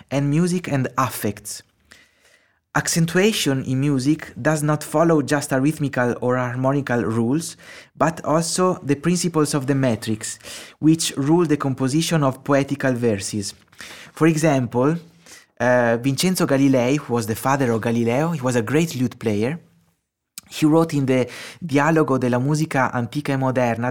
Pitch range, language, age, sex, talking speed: 125-160 Hz, Slovak, 20-39, male, 145 wpm